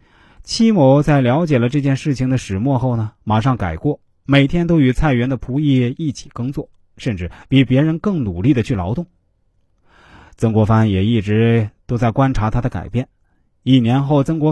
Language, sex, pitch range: Chinese, male, 95-145 Hz